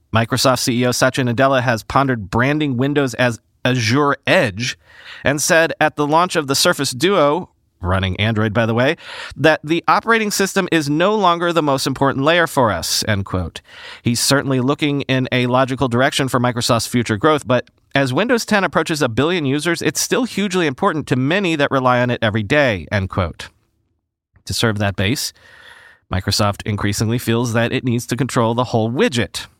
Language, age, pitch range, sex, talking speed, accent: English, 40-59, 115-155 Hz, male, 180 wpm, American